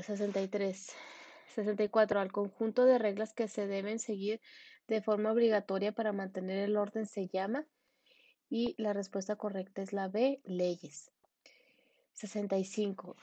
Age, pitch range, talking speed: 20-39, 195-235 Hz, 125 wpm